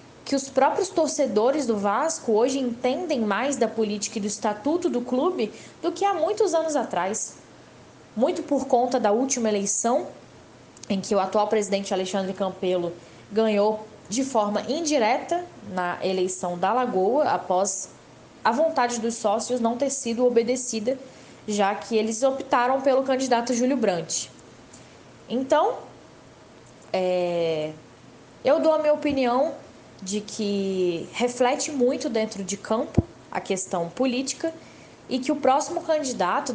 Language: Portuguese